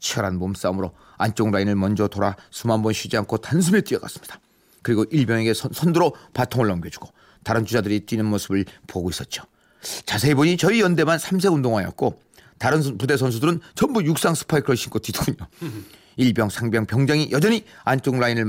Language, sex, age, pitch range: Korean, male, 40-59, 110-145 Hz